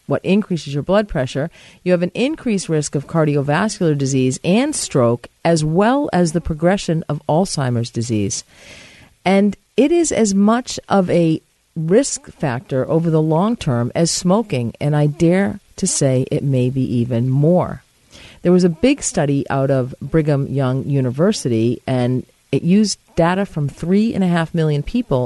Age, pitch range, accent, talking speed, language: 50-69, 140-195 Hz, American, 165 wpm, English